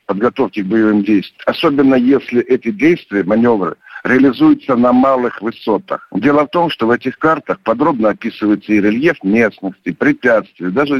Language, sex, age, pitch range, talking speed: Russian, male, 60-79, 105-150 Hz, 145 wpm